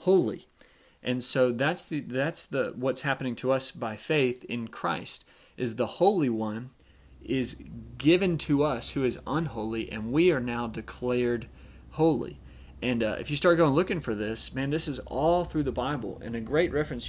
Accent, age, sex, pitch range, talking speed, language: American, 30-49, male, 120-155 Hz, 185 wpm, English